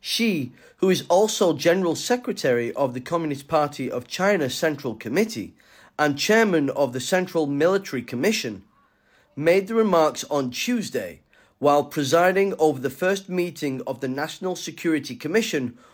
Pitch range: 140-190 Hz